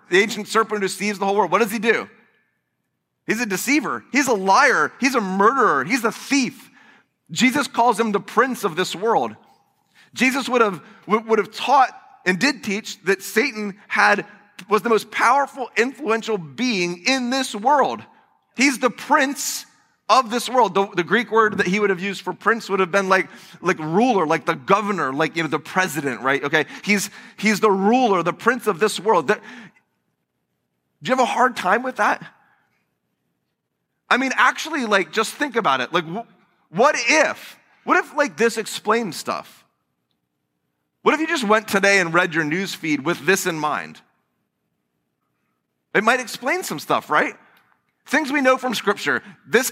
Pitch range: 180-240 Hz